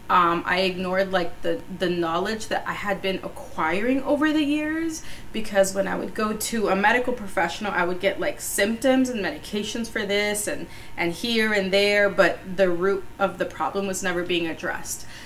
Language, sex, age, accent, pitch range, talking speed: English, female, 20-39, American, 175-210 Hz, 190 wpm